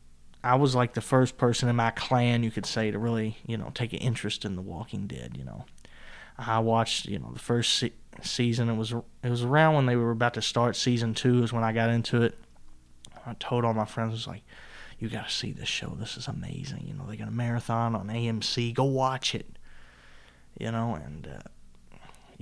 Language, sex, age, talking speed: English, male, 20-39, 225 wpm